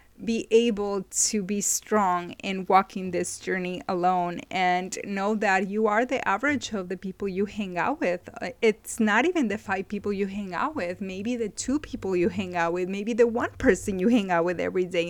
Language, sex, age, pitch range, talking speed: English, female, 30-49, 185-215 Hz, 205 wpm